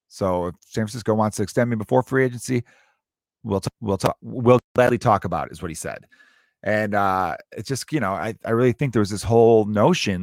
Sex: male